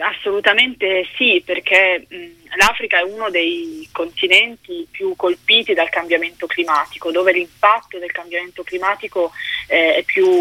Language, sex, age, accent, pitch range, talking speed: Italian, female, 20-39, native, 170-225 Hz, 120 wpm